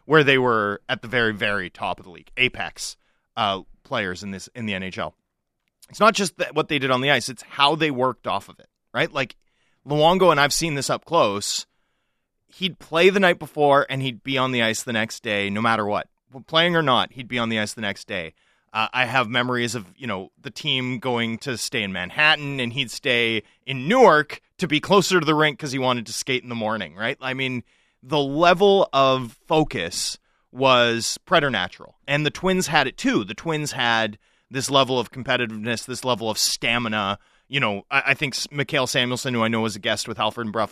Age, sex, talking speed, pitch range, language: 30-49, male, 220 wpm, 115-145 Hz, English